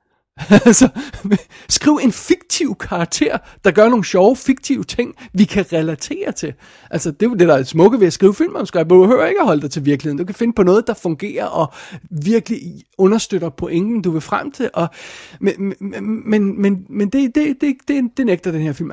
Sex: male